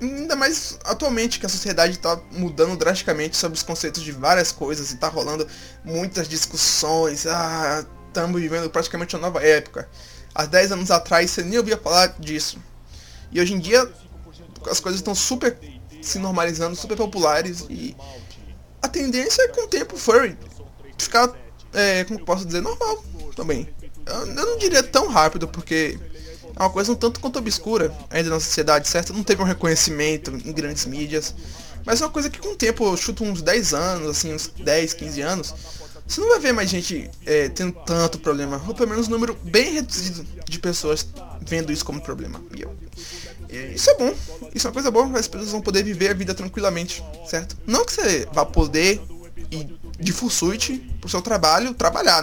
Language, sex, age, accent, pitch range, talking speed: Portuguese, male, 20-39, Brazilian, 160-230 Hz, 180 wpm